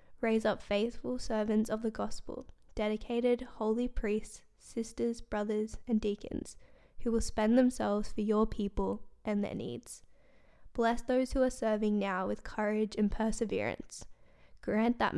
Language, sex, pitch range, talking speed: English, female, 210-235 Hz, 140 wpm